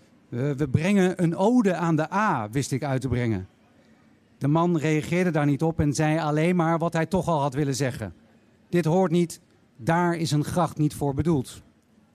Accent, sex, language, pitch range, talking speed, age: Dutch, male, Dutch, 140-180 Hz, 195 wpm, 50-69